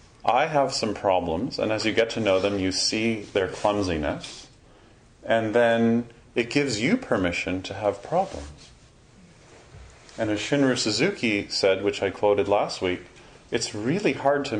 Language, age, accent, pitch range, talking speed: English, 30-49, American, 105-140 Hz, 155 wpm